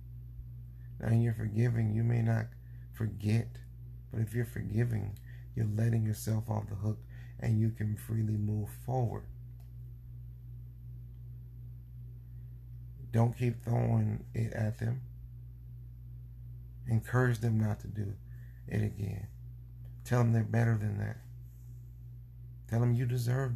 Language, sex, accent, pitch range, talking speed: English, male, American, 110-120 Hz, 115 wpm